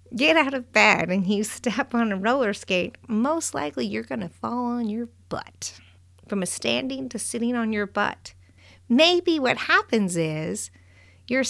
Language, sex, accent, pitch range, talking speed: English, female, American, 155-250 Hz, 170 wpm